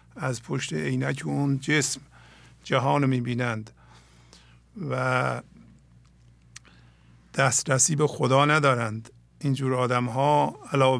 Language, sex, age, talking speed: English, male, 50-69, 95 wpm